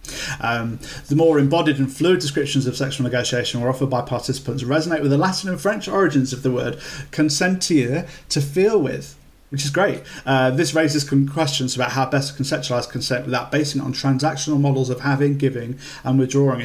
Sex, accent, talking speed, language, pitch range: male, British, 190 wpm, English, 125-145 Hz